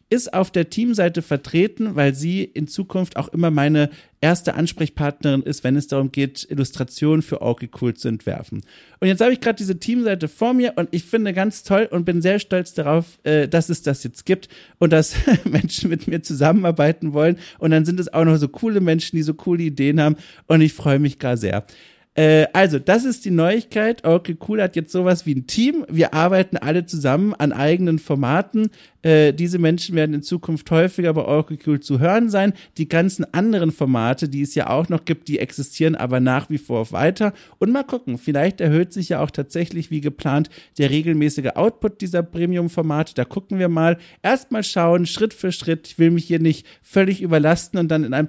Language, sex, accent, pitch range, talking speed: German, male, German, 150-185 Hz, 200 wpm